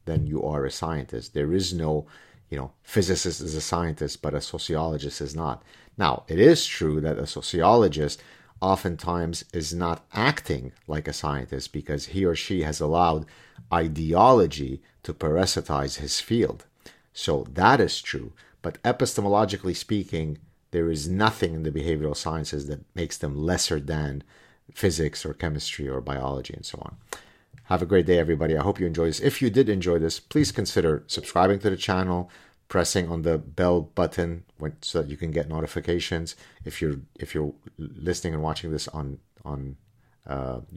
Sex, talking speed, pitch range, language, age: male, 170 wpm, 75-90 Hz, English, 50-69